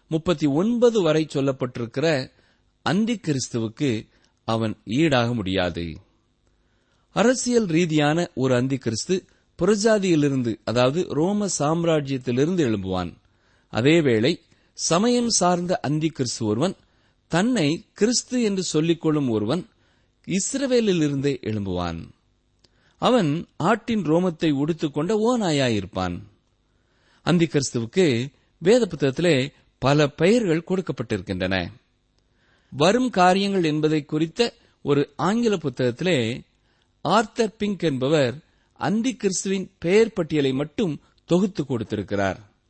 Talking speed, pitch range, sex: 75 wpm, 120-185 Hz, male